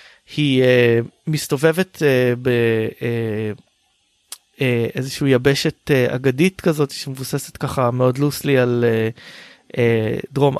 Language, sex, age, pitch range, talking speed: Hebrew, male, 20-39, 125-155 Hz, 110 wpm